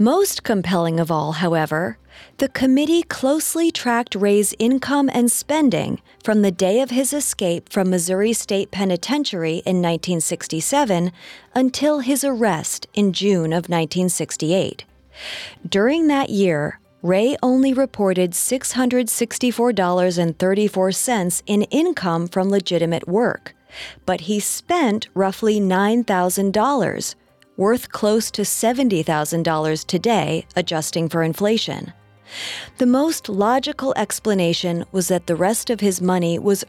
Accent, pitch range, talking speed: American, 175-230 Hz, 115 wpm